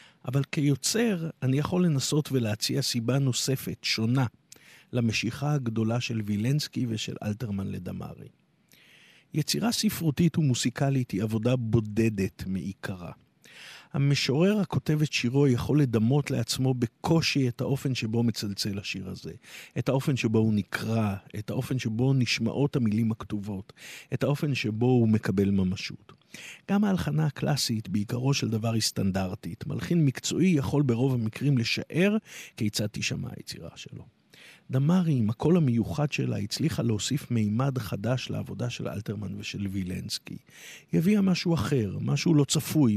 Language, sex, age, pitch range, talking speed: Hebrew, male, 50-69, 110-145 Hz, 130 wpm